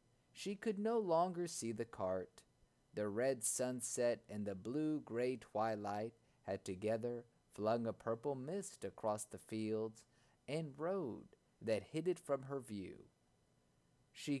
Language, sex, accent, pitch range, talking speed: English, male, American, 105-155 Hz, 135 wpm